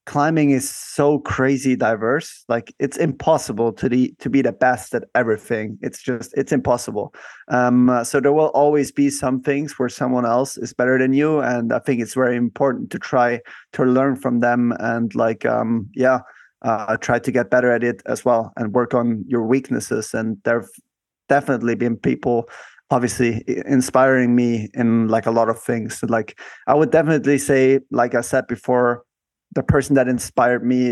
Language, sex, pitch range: English, male, 120-135 Hz